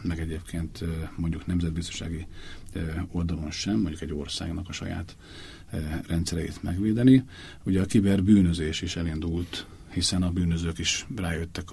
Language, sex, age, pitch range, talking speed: Hungarian, male, 50-69, 85-95 Hz, 120 wpm